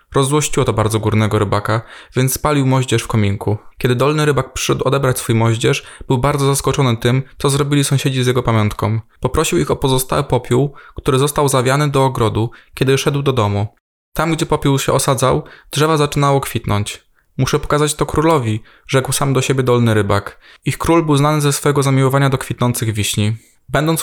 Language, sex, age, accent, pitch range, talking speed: Polish, male, 20-39, native, 115-145 Hz, 175 wpm